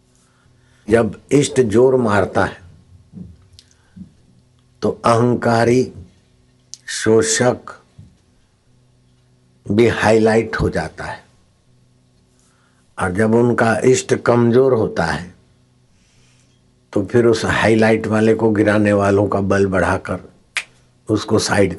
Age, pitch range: 60-79, 95-120 Hz